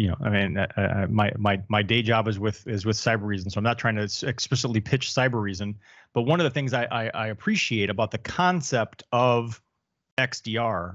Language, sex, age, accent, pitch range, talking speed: English, male, 30-49, American, 110-135 Hz, 215 wpm